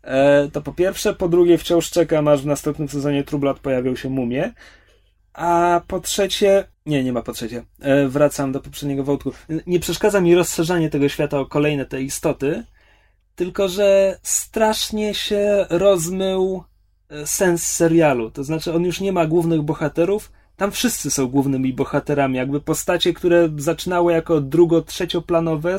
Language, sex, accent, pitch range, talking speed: Polish, male, native, 140-185 Hz, 145 wpm